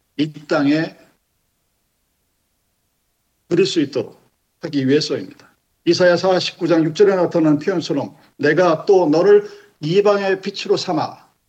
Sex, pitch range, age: male, 150-210 Hz, 50-69